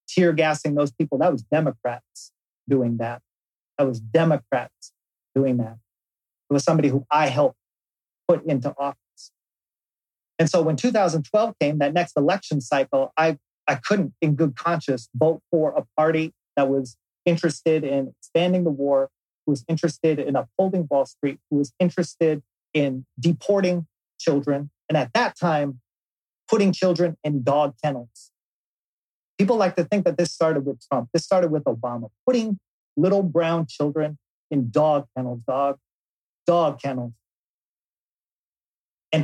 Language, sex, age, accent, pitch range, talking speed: English, male, 30-49, American, 140-185 Hz, 145 wpm